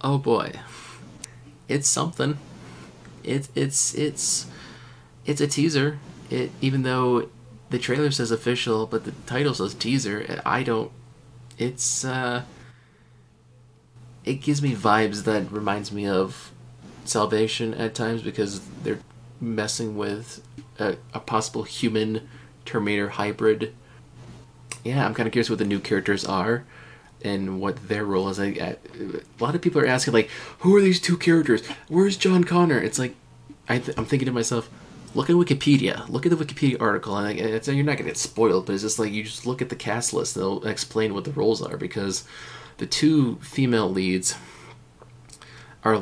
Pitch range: 100-130 Hz